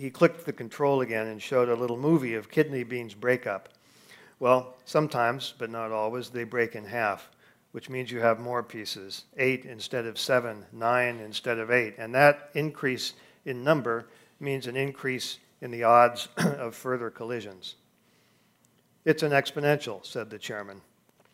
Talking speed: 160 wpm